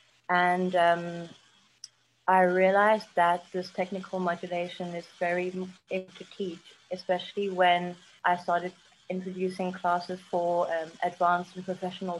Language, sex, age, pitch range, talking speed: English, female, 30-49, 175-190 Hz, 120 wpm